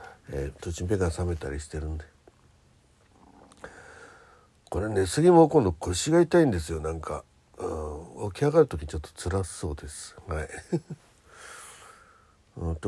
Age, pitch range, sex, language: 60-79, 80-120 Hz, male, Japanese